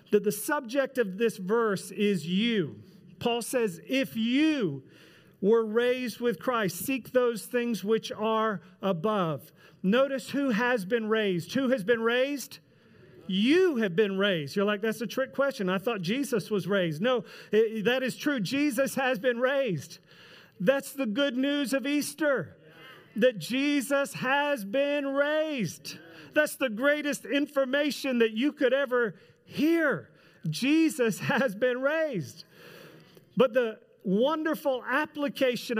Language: English